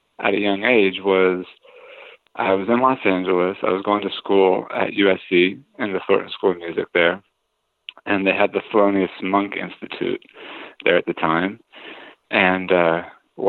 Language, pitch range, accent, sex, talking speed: English, 95-120 Hz, American, male, 165 wpm